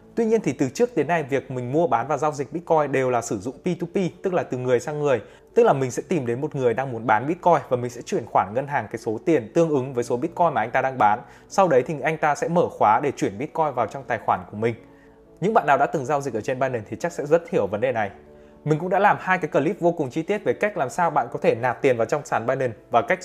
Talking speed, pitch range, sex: 305 wpm, 125-175 Hz, male